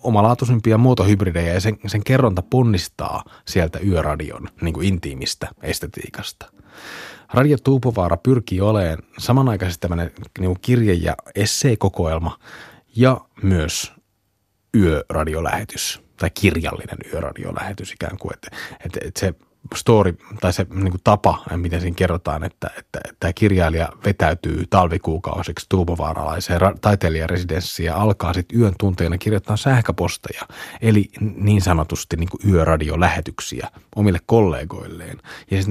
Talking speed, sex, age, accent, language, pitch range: 115 wpm, male, 30-49, native, Finnish, 85-110 Hz